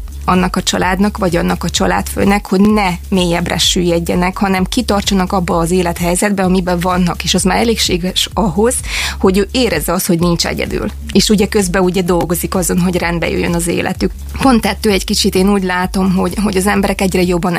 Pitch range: 180-200 Hz